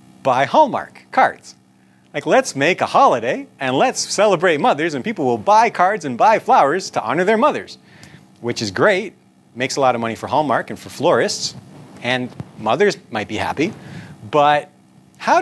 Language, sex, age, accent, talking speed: English, male, 40-59, American, 170 wpm